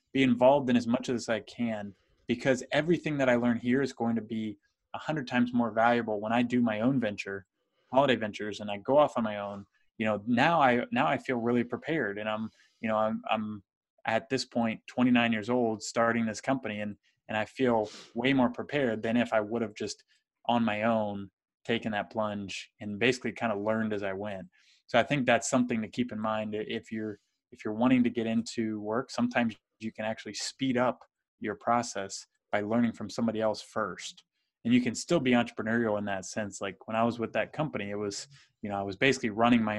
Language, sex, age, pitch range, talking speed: English, male, 20-39, 105-125 Hz, 220 wpm